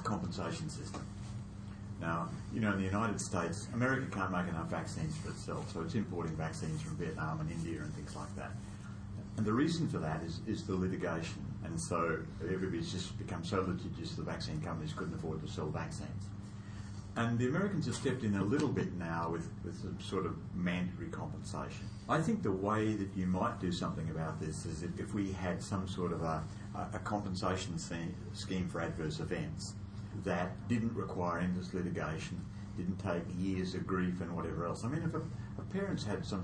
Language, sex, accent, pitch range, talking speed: English, male, Australian, 90-105 Hz, 190 wpm